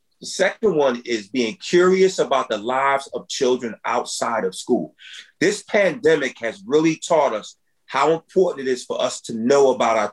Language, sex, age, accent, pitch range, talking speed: English, male, 30-49, American, 130-180 Hz, 180 wpm